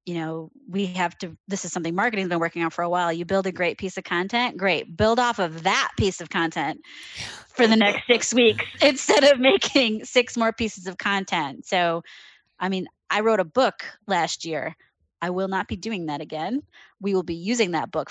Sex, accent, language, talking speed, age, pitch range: female, American, English, 220 wpm, 20-39, 165-200 Hz